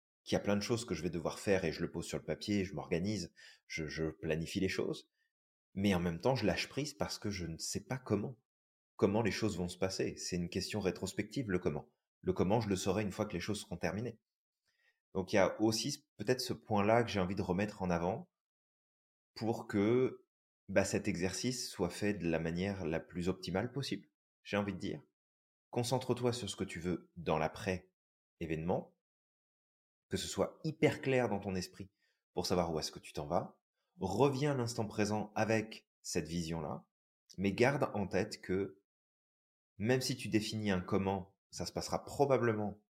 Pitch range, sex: 90-115 Hz, male